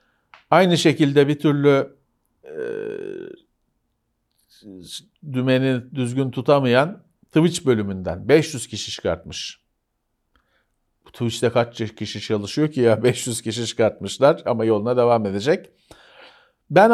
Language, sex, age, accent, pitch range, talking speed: Turkish, male, 50-69, native, 120-180 Hz, 100 wpm